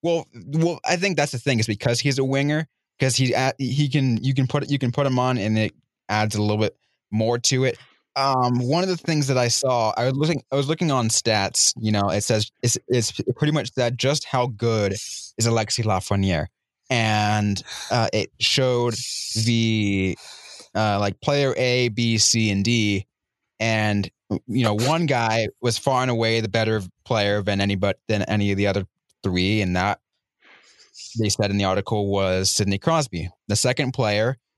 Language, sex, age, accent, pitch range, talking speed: English, male, 20-39, American, 105-135 Hz, 195 wpm